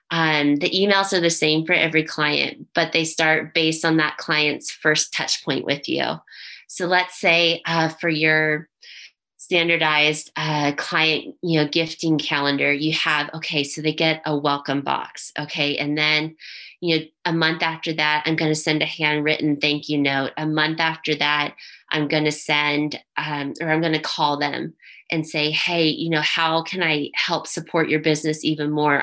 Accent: American